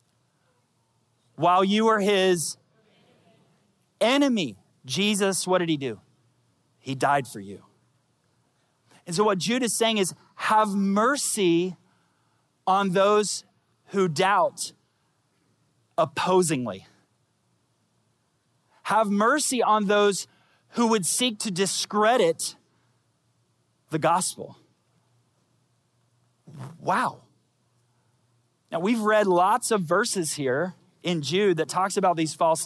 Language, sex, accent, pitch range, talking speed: English, male, American, 140-205 Hz, 100 wpm